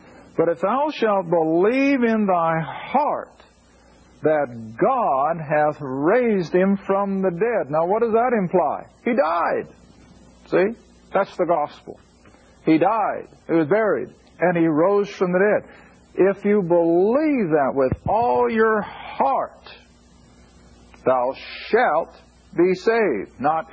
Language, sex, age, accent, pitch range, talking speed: English, male, 50-69, American, 140-205 Hz, 130 wpm